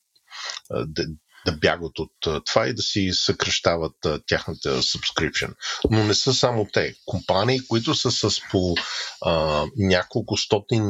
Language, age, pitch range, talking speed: Bulgarian, 50-69, 95-120 Hz, 140 wpm